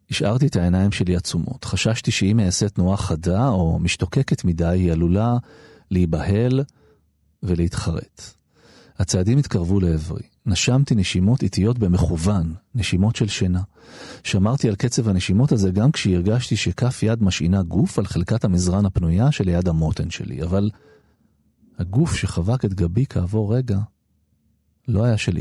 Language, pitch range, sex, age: Hebrew, 90-115 Hz, male, 40-59